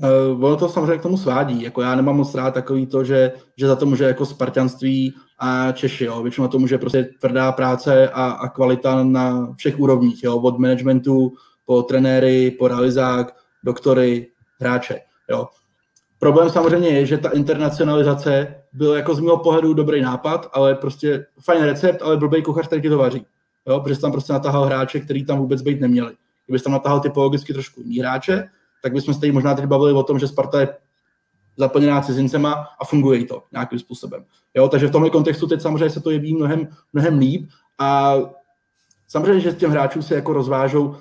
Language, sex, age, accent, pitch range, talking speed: Czech, male, 20-39, native, 130-150 Hz, 185 wpm